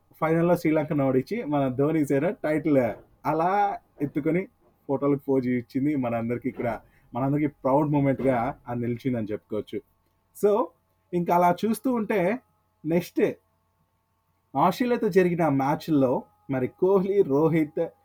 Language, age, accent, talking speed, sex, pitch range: Telugu, 30-49, native, 110 wpm, male, 105-145 Hz